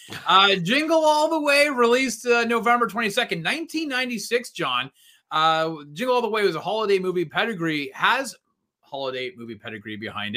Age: 30-49